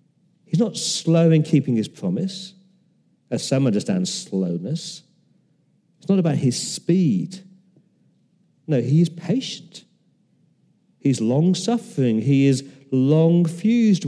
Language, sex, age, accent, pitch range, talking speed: English, male, 40-59, British, 135-180 Hz, 105 wpm